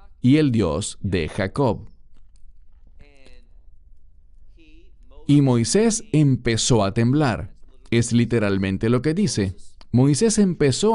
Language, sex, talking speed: English, male, 95 wpm